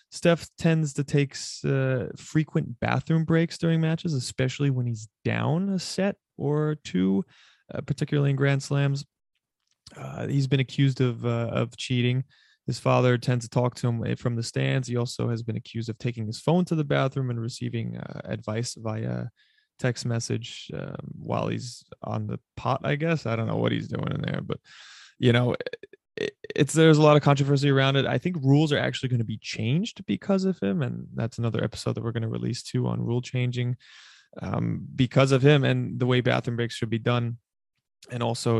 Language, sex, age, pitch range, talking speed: English, male, 20-39, 115-140 Hz, 195 wpm